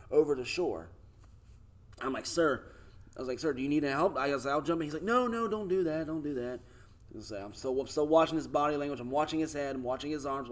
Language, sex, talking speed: English, male, 290 wpm